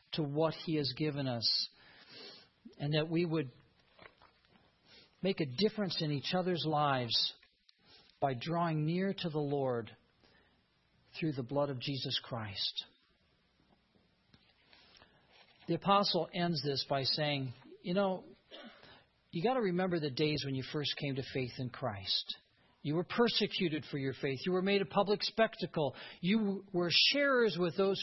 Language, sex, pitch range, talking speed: English, male, 135-185 Hz, 145 wpm